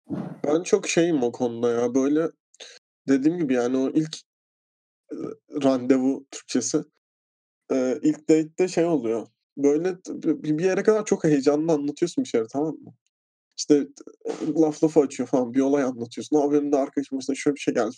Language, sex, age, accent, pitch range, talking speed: Turkish, male, 20-39, native, 135-165 Hz, 155 wpm